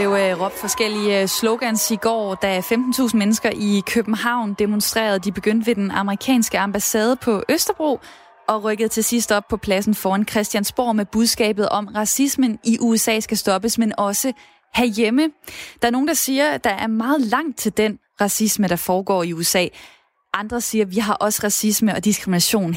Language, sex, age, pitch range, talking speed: Danish, female, 20-39, 205-245 Hz, 180 wpm